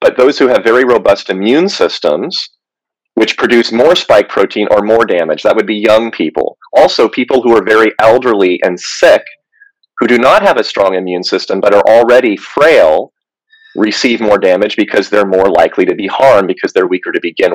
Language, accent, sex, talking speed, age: English, American, male, 190 wpm, 30-49